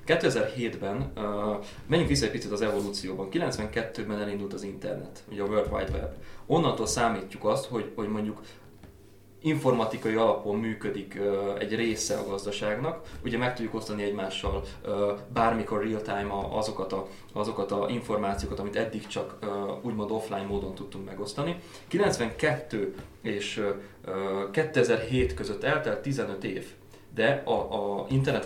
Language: Hungarian